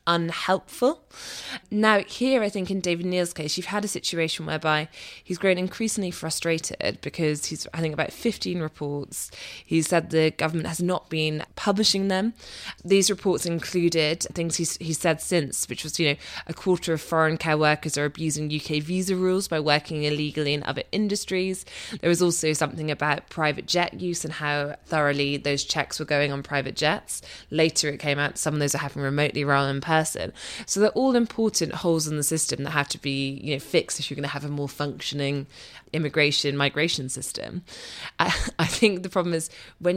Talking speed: 190 wpm